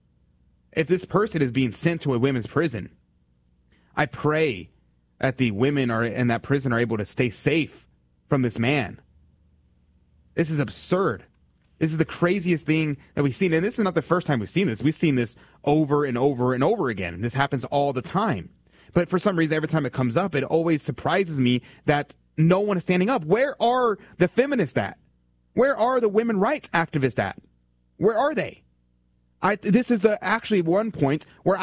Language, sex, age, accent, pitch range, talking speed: English, male, 30-49, American, 100-170 Hz, 195 wpm